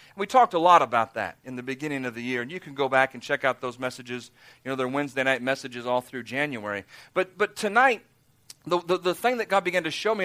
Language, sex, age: English, male, 40-59